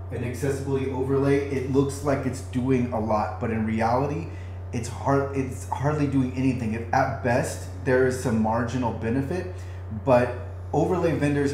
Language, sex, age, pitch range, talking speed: English, male, 30-49, 100-135 Hz, 155 wpm